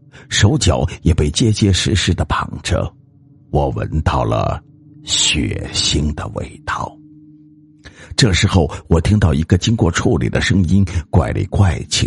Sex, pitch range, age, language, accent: male, 75-110 Hz, 50-69, Chinese, native